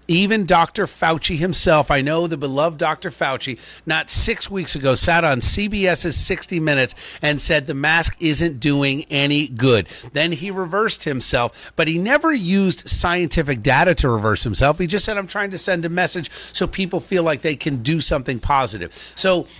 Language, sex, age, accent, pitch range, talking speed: English, male, 50-69, American, 140-175 Hz, 180 wpm